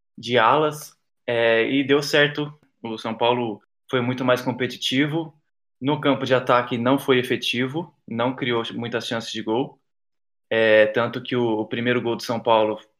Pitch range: 115-130 Hz